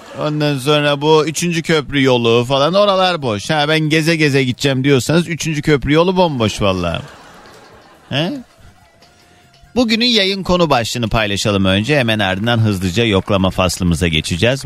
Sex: male